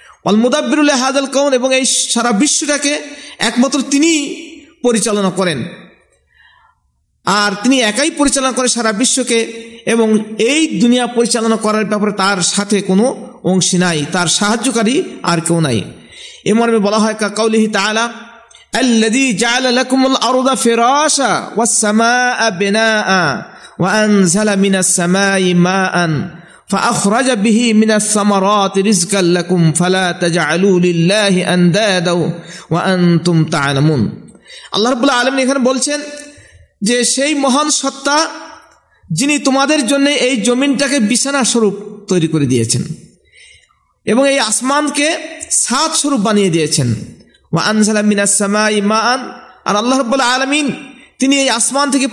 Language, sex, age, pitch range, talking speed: Bengali, male, 50-69, 195-270 Hz, 45 wpm